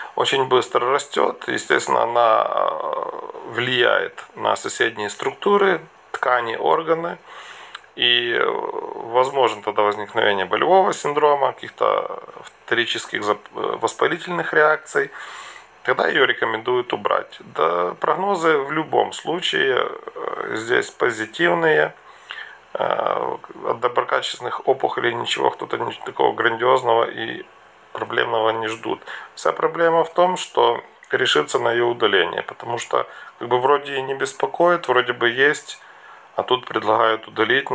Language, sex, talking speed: Russian, male, 110 wpm